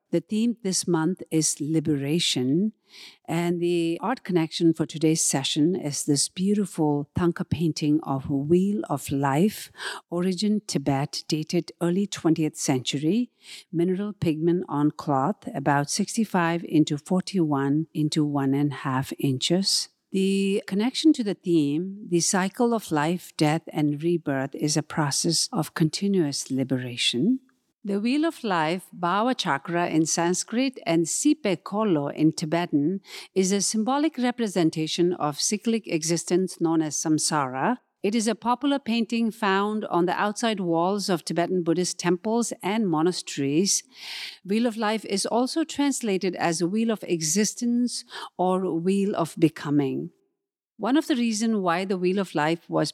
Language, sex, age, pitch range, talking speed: English, female, 50-69, 155-210 Hz, 140 wpm